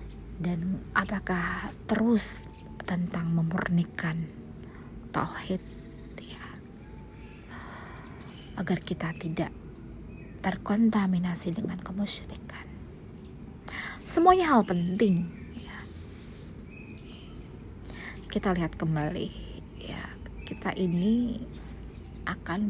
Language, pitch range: Indonesian, 175-215 Hz